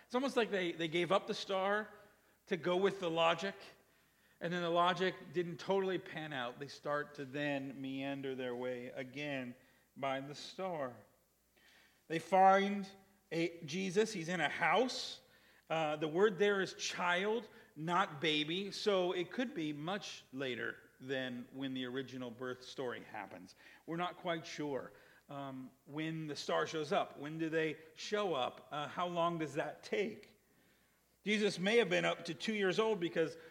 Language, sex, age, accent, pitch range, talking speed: English, male, 50-69, American, 145-195 Hz, 165 wpm